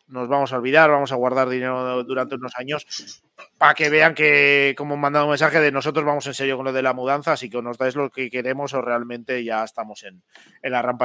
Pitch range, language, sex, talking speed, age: 125-150 Hz, Spanish, male, 245 wpm, 30-49